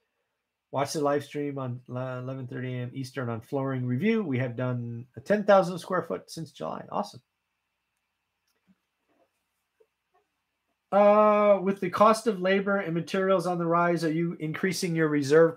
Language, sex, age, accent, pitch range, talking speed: English, male, 30-49, American, 120-175 Hz, 145 wpm